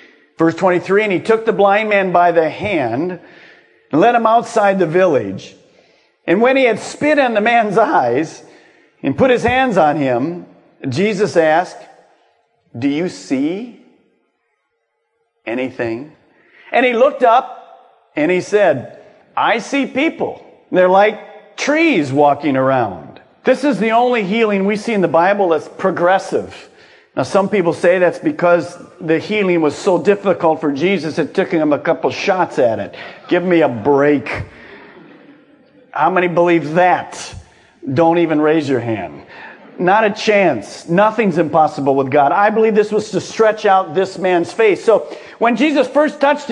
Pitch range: 175-270 Hz